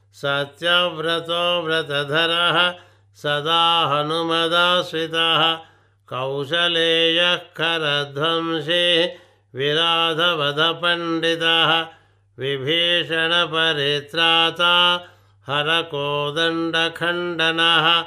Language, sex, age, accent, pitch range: Telugu, male, 60-79, native, 145-170 Hz